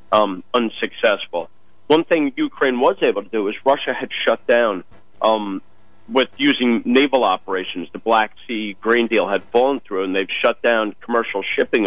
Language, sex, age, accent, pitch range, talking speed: English, male, 50-69, American, 110-135 Hz, 160 wpm